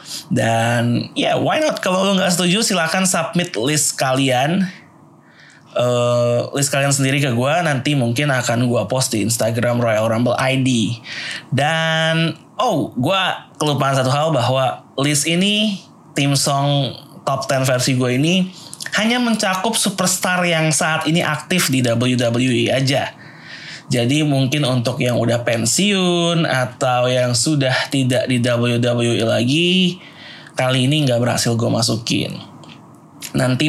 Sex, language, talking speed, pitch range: male, Indonesian, 135 wpm, 120-160 Hz